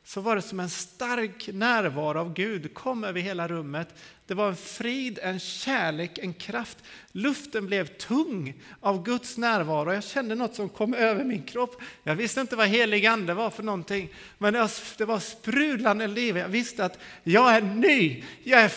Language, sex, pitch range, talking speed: Swedish, male, 185-240 Hz, 180 wpm